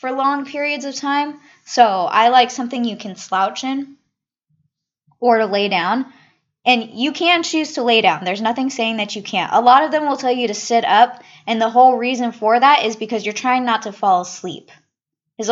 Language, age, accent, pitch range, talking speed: English, 20-39, American, 190-245 Hz, 215 wpm